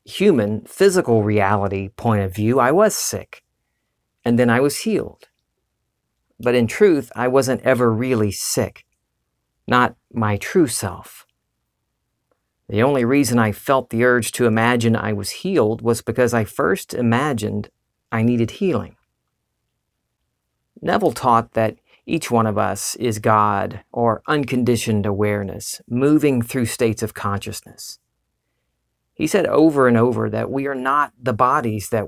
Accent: American